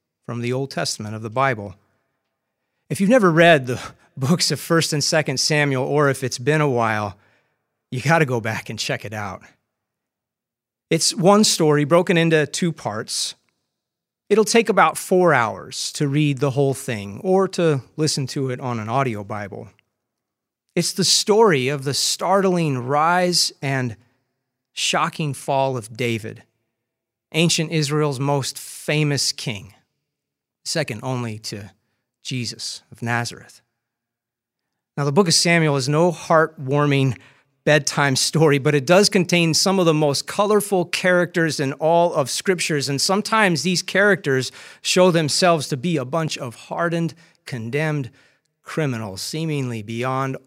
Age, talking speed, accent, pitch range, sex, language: 30-49, 145 wpm, American, 120-165 Hz, male, English